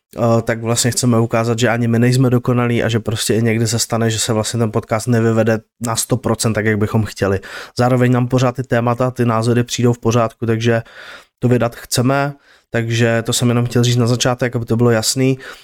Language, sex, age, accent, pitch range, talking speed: Czech, male, 20-39, native, 115-125 Hz, 205 wpm